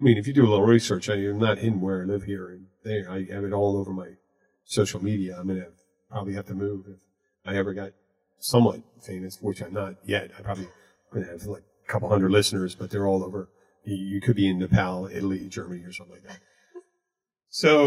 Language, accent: English, American